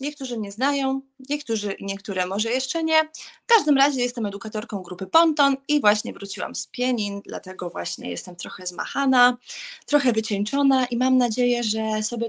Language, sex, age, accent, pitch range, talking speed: Polish, female, 20-39, native, 205-270 Hz, 155 wpm